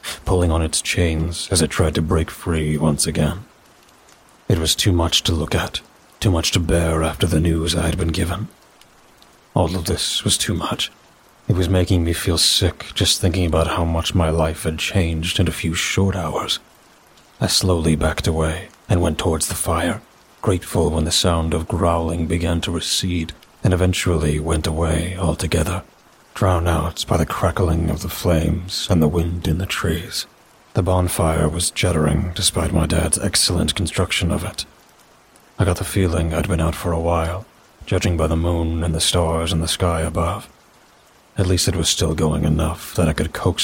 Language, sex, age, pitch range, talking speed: English, male, 30-49, 80-90 Hz, 185 wpm